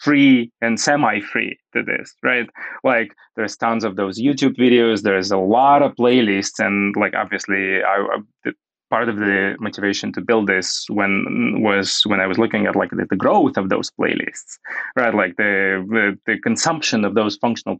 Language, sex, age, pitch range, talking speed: English, male, 20-39, 105-140 Hz, 175 wpm